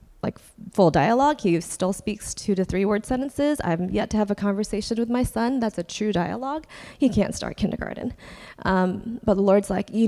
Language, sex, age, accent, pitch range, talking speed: English, female, 20-39, American, 175-210 Hz, 210 wpm